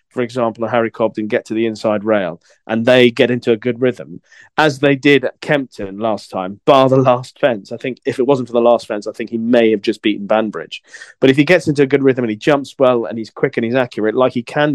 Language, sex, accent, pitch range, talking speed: English, male, British, 110-135 Hz, 265 wpm